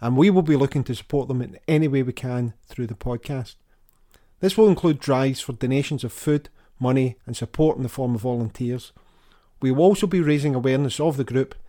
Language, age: English, 40-59